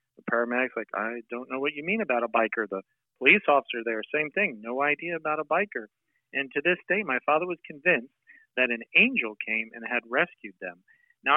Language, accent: English, American